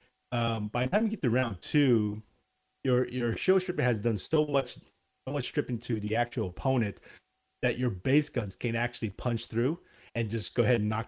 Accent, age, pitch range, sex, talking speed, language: American, 30-49, 105-130 Hz, male, 205 wpm, English